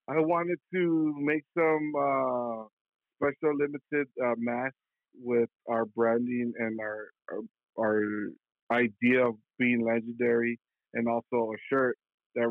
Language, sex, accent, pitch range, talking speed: English, male, American, 115-130 Hz, 125 wpm